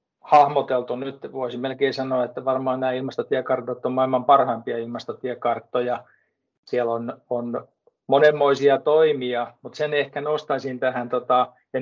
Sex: male